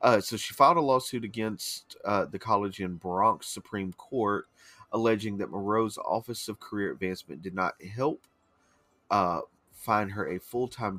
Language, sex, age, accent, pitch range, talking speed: English, male, 40-59, American, 95-115 Hz, 160 wpm